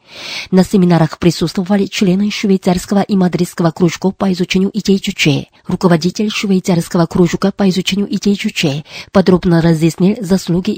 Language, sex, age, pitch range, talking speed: Russian, female, 20-39, 170-195 Hz, 110 wpm